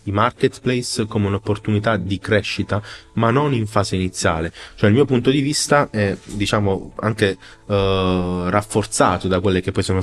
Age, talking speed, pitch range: 20-39, 160 wpm, 95-110 Hz